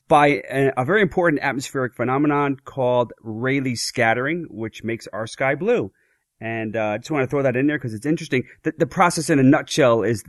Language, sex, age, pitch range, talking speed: English, male, 30-49, 115-150 Hz, 200 wpm